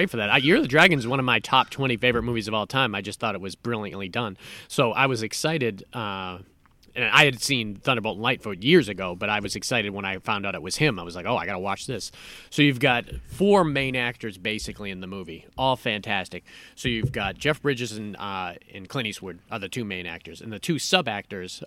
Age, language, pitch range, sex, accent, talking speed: 30-49, English, 105-140 Hz, male, American, 245 wpm